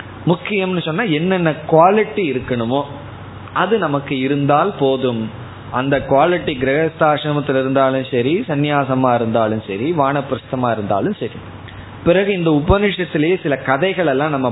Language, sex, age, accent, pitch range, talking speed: Tamil, male, 20-39, native, 125-160 Hz, 110 wpm